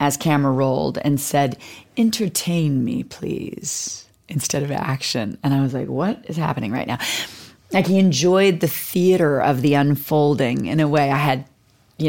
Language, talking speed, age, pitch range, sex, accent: English, 170 wpm, 30-49, 135-165 Hz, female, American